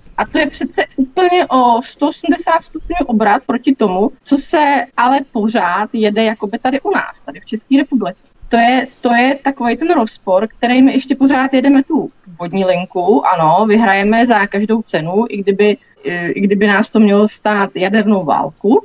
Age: 20-39